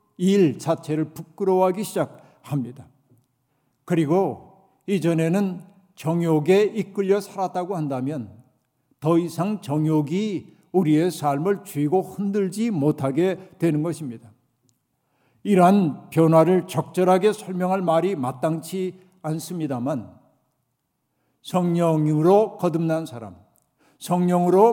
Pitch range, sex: 145-185 Hz, male